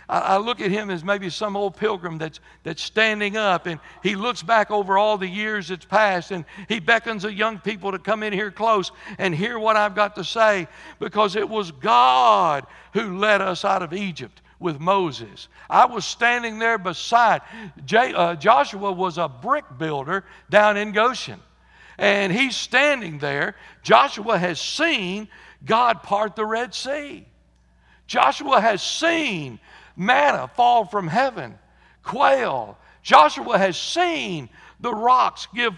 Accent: American